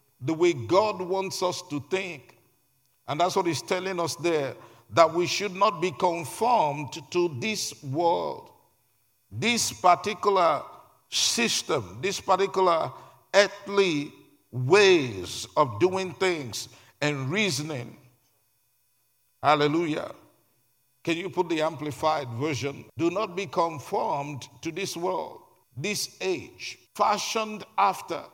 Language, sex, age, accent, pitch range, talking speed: English, male, 50-69, Nigerian, 150-205 Hz, 110 wpm